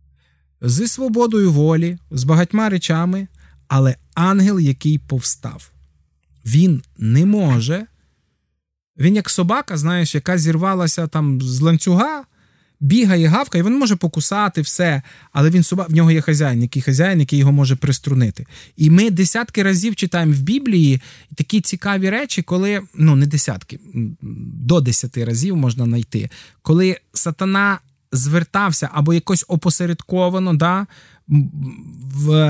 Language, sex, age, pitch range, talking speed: Ukrainian, male, 20-39, 145-195 Hz, 125 wpm